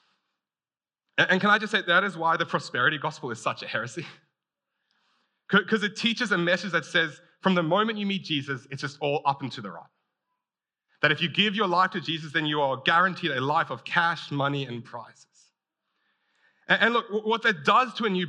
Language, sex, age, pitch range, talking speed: English, male, 30-49, 150-195 Hz, 205 wpm